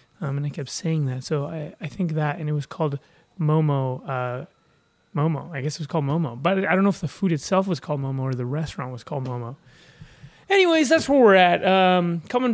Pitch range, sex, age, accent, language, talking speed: 155-195 Hz, male, 20-39, American, English, 230 wpm